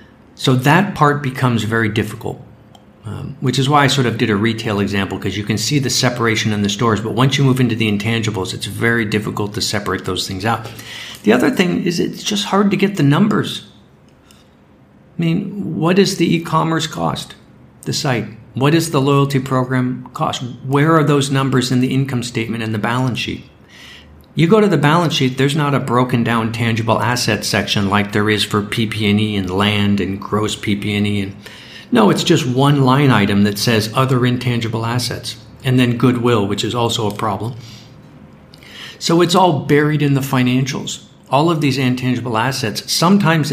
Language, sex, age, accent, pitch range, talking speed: English, male, 50-69, American, 110-135 Hz, 185 wpm